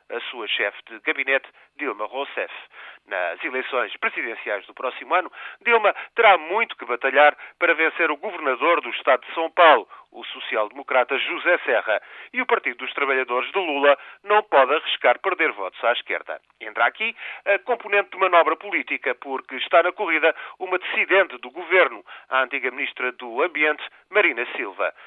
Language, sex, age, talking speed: Portuguese, male, 40-59, 160 wpm